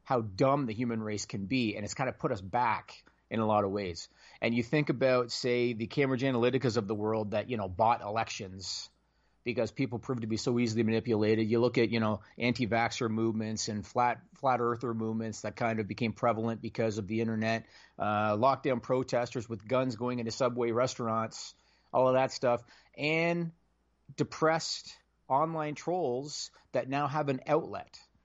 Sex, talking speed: male, 180 wpm